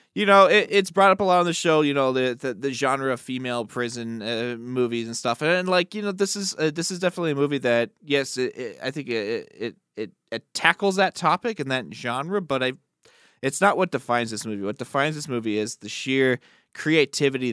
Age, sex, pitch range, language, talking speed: 20-39, male, 120-150 Hz, English, 235 wpm